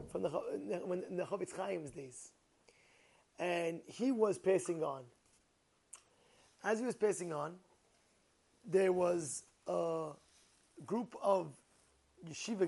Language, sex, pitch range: English, male, 170-225 Hz